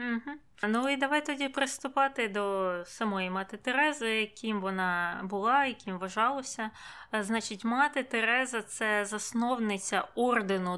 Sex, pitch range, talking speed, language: female, 195-235 Hz, 130 wpm, Ukrainian